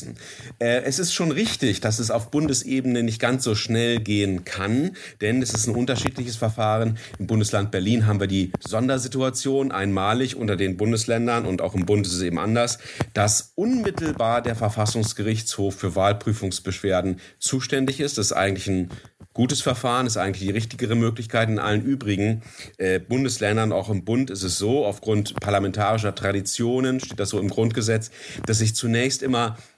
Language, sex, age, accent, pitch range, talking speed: German, male, 40-59, German, 95-120 Hz, 165 wpm